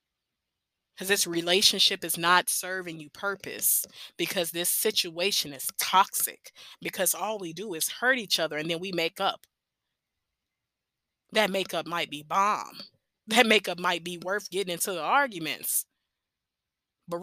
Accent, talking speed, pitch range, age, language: American, 145 wpm, 175-235 Hz, 20-39, English